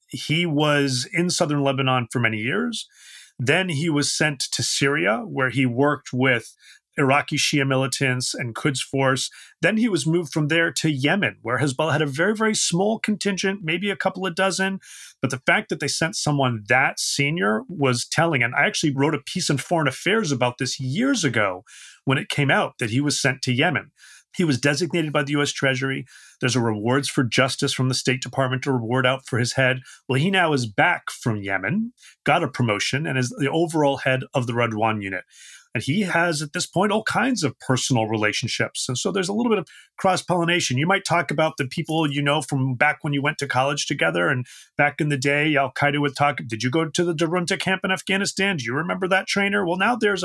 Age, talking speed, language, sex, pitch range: 40-59, 215 wpm, English, male, 130-170 Hz